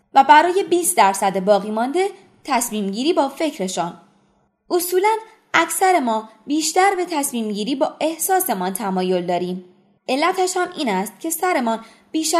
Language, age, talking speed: Persian, 20-39, 135 wpm